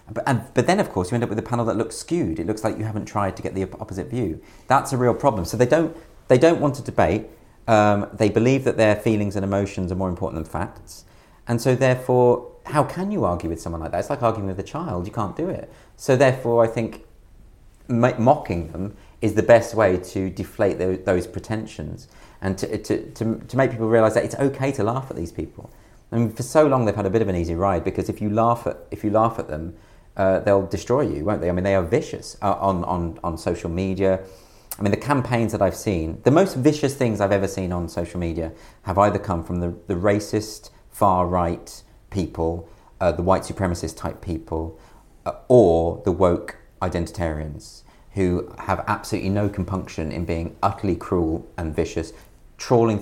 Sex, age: male, 40-59